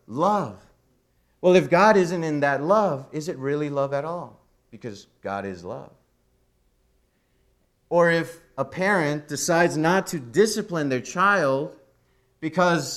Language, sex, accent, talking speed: English, male, American, 135 wpm